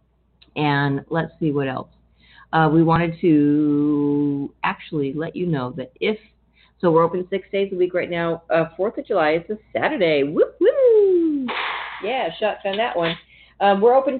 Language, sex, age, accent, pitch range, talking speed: English, female, 50-69, American, 135-180 Hz, 165 wpm